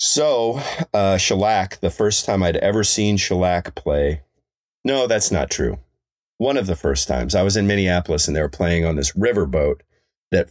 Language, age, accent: English, 40-59, American